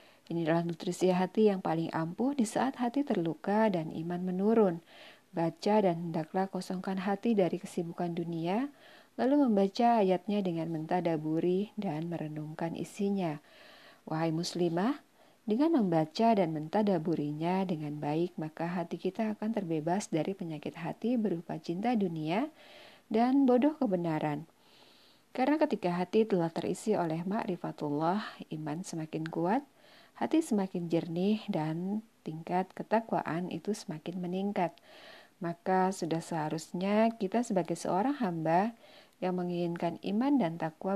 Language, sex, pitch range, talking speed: Indonesian, female, 165-215 Hz, 120 wpm